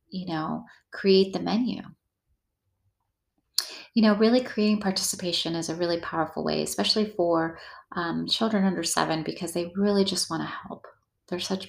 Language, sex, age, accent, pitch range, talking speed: English, female, 30-49, American, 160-195 Hz, 155 wpm